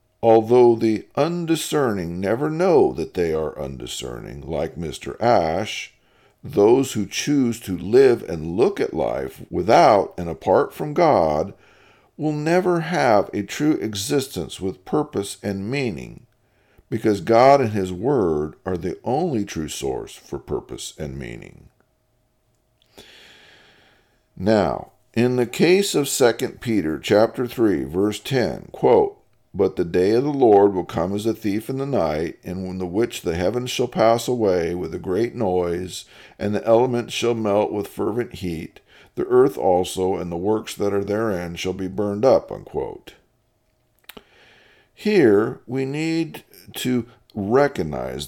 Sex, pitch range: male, 95-135 Hz